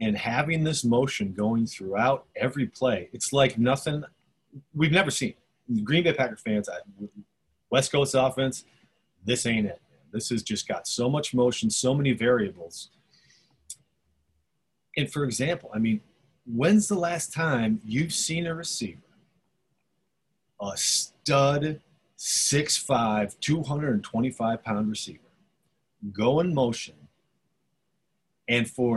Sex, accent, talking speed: male, American, 120 wpm